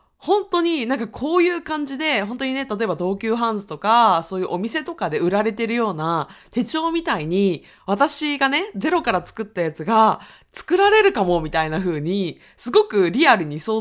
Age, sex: 20-39, female